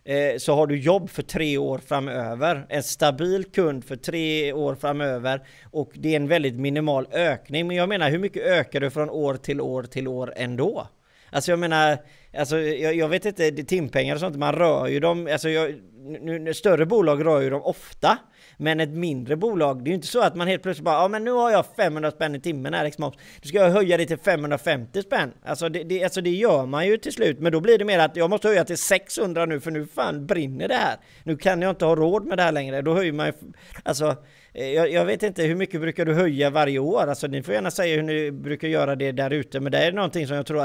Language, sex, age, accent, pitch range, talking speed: Swedish, male, 30-49, native, 140-170 Hz, 245 wpm